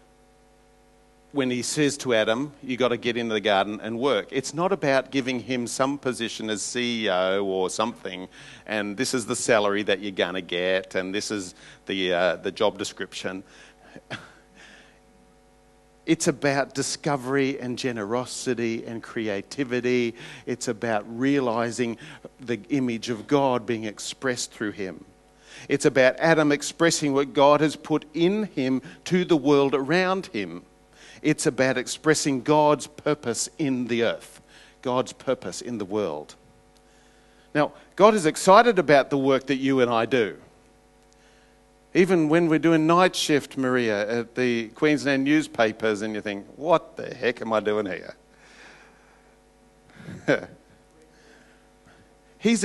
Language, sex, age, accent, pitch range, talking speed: English, male, 50-69, Australian, 115-150 Hz, 140 wpm